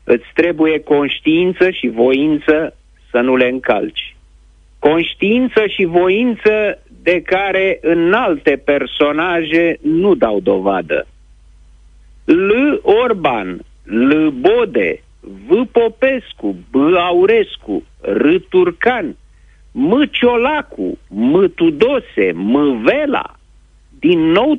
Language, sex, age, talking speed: Romanian, male, 50-69, 95 wpm